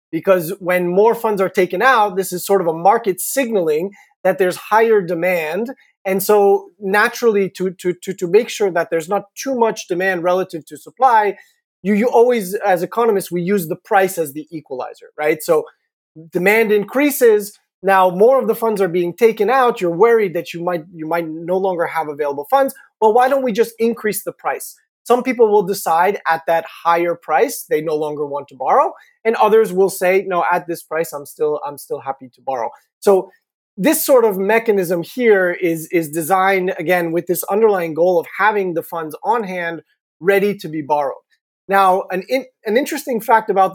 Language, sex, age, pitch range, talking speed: English, male, 30-49, 170-225 Hz, 190 wpm